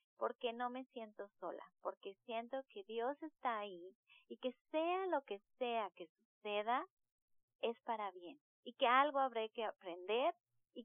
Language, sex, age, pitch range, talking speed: Spanish, female, 30-49, 220-305 Hz, 160 wpm